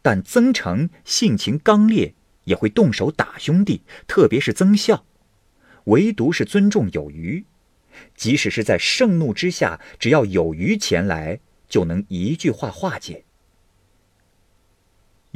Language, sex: Chinese, male